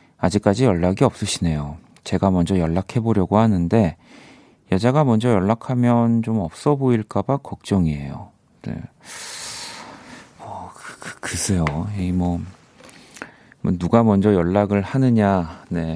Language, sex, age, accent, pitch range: Korean, male, 40-59, native, 90-115 Hz